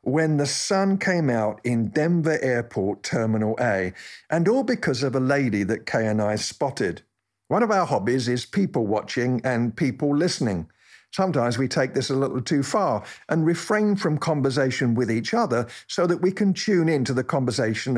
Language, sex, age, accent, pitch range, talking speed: English, male, 50-69, British, 115-165 Hz, 185 wpm